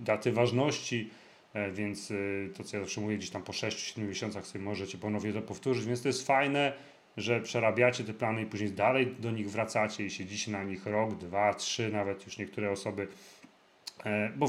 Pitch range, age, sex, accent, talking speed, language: 105-120 Hz, 40-59, male, native, 180 wpm, Polish